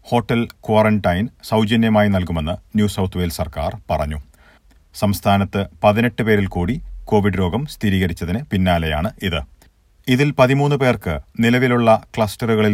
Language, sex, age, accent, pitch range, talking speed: Malayalam, male, 40-59, native, 90-115 Hz, 110 wpm